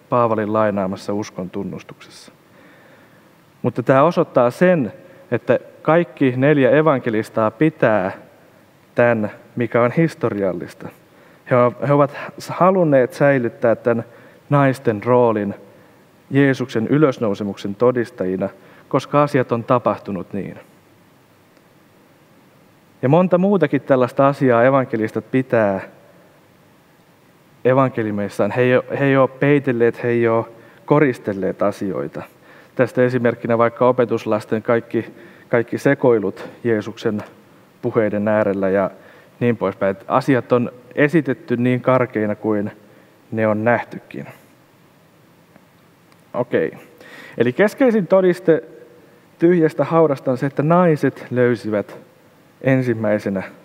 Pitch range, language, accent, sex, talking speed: 110-145 Hz, Finnish, native, male, 90 wpm